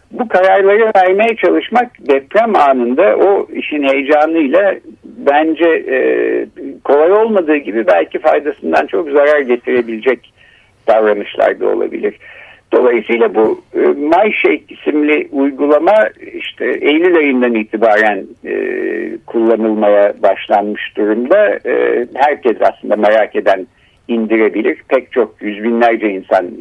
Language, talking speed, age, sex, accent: Turkish, 95 wpm, 60-79, male, native